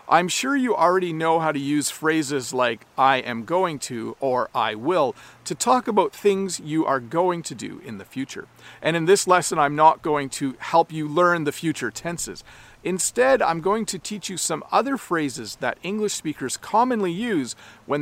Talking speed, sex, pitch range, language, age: 195 wpm, male, 135-190 Hz, English, 40-59